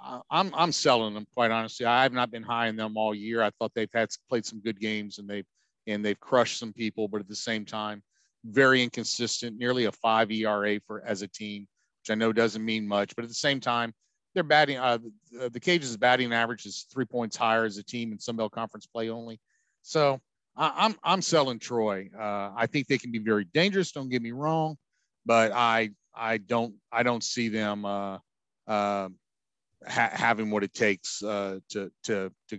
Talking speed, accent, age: 210 wpm, American, 50-69